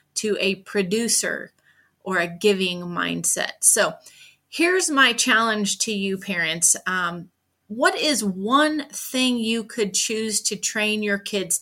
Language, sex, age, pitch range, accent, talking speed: English, female, 30-49, 195-240 Hz, American, 135 wpm